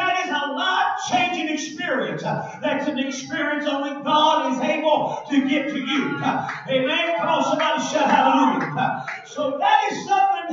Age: 40-59